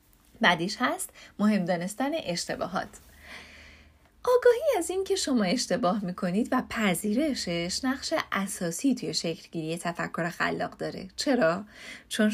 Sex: female